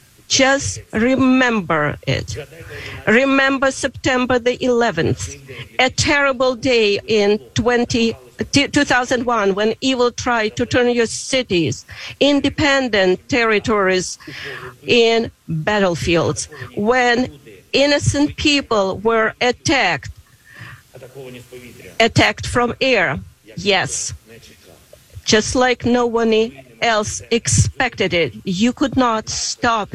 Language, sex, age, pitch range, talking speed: English, female, 40-59, 190-245 Hz, 90 wpm